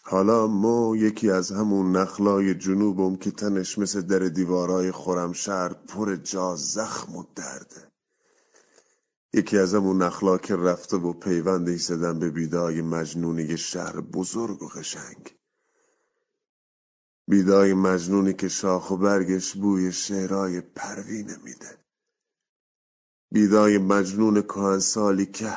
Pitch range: 95-110 Hz